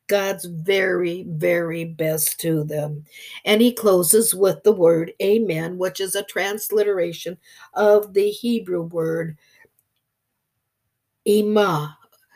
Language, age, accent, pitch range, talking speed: English, 60-79, American, 170-215 Hz, 105 wpm